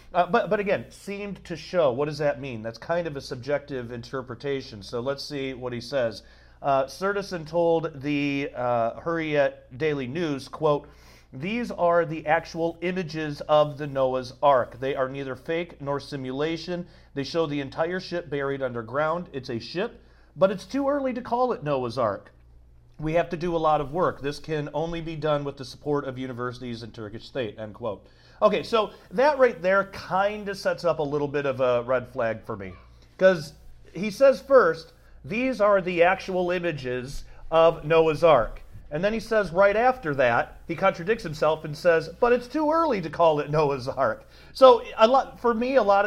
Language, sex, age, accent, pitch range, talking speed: English, male, 40-59, American, 135-185 Hz, 190 wpm